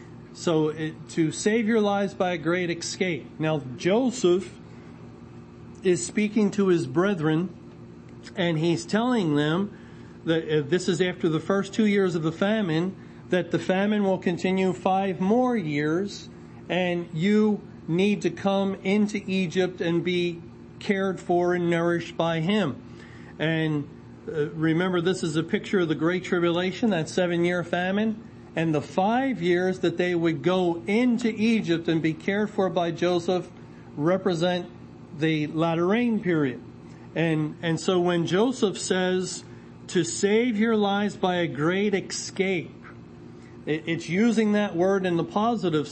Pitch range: 160-195 Hz